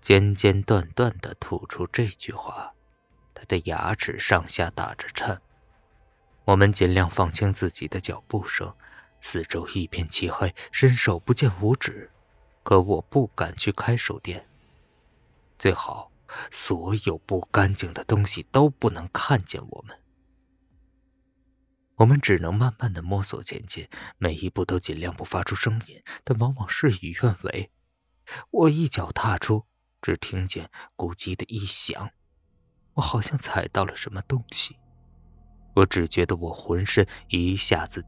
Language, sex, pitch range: Chinese, male, 90-115 Hz